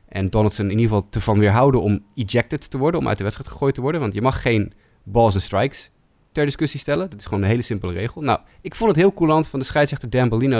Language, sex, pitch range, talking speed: Dutch, male, 105-145 Hz, 265 wpm